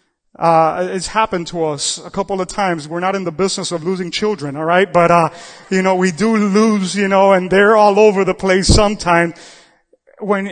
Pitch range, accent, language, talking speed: 185-225 Hz, American, English, 205 wpm